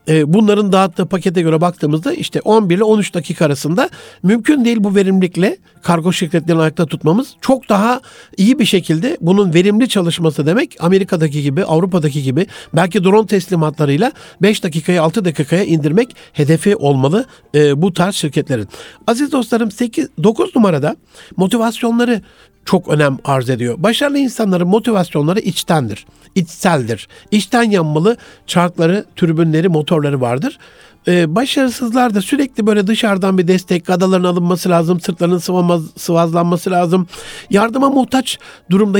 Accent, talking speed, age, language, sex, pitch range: native, 125 wpm, 60-79, Turkish, male, 165-215 Hz